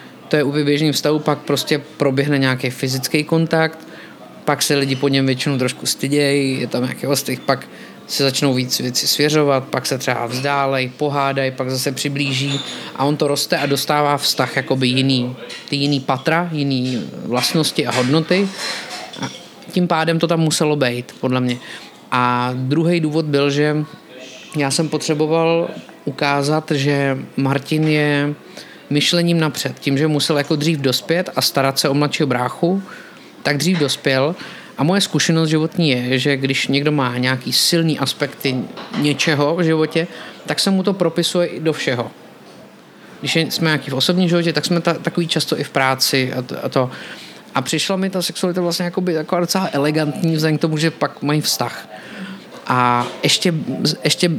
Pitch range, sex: 135-165 Hz, male